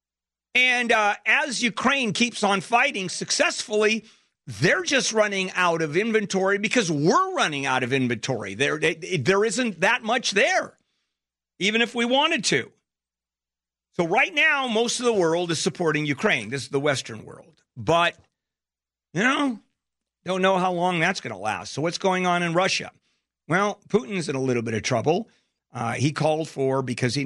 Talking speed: 170 wpm